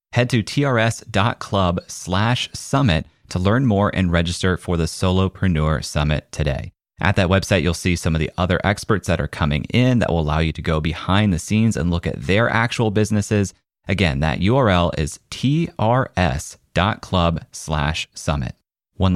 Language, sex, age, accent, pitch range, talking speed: English, male, 30-49, American, 85-115 Hz, 165 wpm